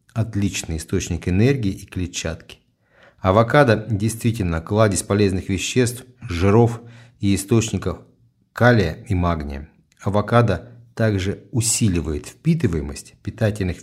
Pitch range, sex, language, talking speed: 95-120 Hz, male, Russian, 90 wpm